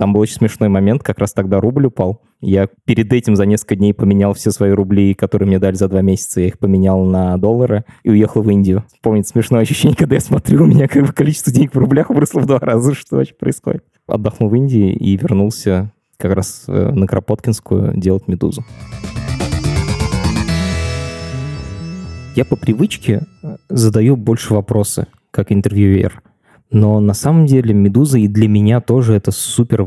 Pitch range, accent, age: 100-120 Hz, native, 20-39